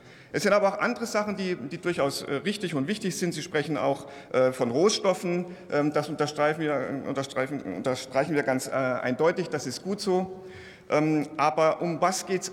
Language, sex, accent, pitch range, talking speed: German, male, German, 135-190 Hz, 170 wpm